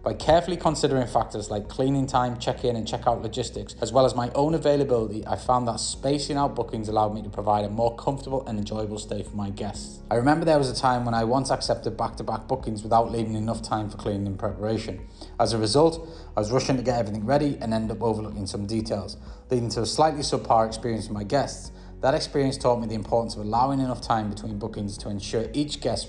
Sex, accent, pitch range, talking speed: male, British, 105-130 Hz, 225 wpm